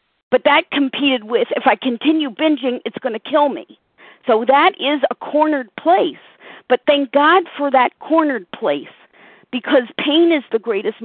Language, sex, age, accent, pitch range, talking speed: English, female, 50-69, American, 215-280 Hz, 170 wpm